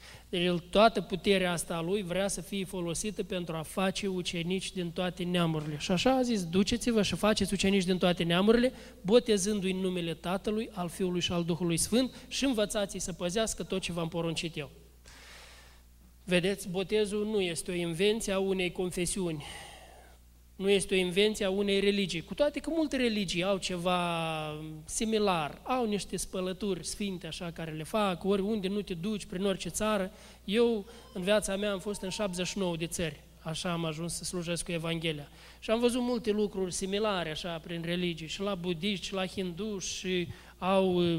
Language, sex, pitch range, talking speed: Romanian, male, 175-205 Hz, 175 wpm